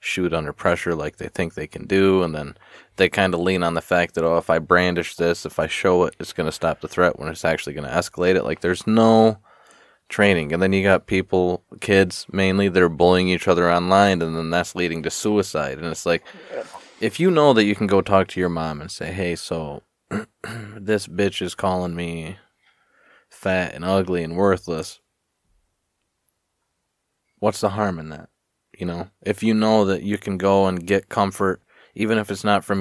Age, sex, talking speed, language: 20-39, male, 205 wpm, English